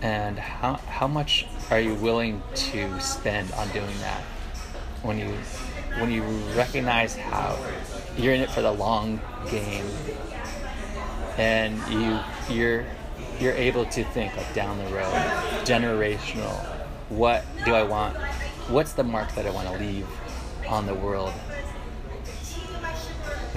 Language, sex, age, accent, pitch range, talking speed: English, male, 20-39, American, 75-120 Hz, 135 wpm